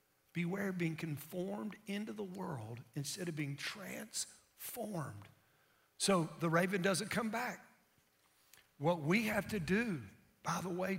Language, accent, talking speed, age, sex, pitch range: English, American, 135 wpm, 50-69, male, 165-225 Hz